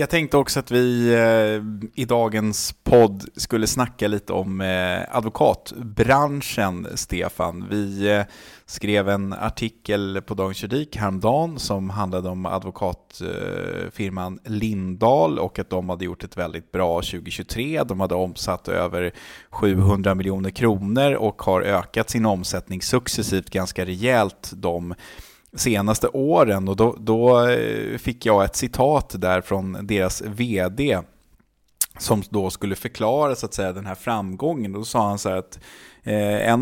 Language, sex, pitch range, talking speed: Swedish, male, 95-115 Hz, 140 wpm